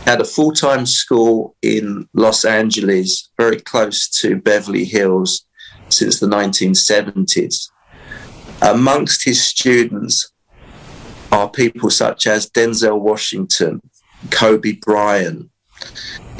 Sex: male